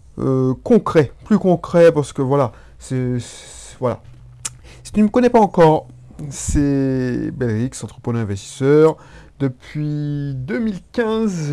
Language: French